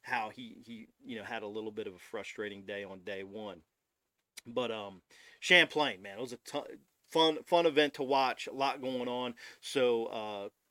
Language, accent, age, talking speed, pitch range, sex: English, American, 40-59, 195 wpm, 125-160 Hz, male